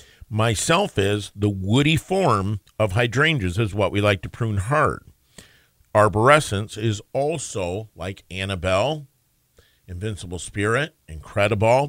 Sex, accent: male, American